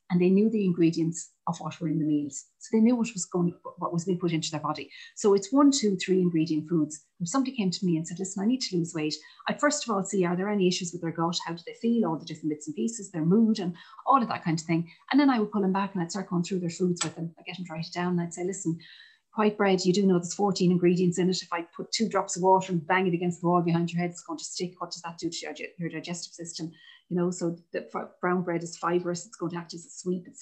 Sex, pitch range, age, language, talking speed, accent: female, 165-210 Hz, 30-49, English, 310 wpm, Irish